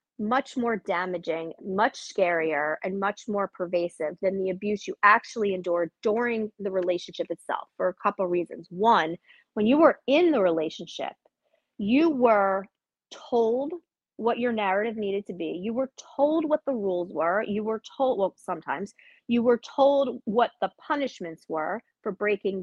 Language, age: English, 30-49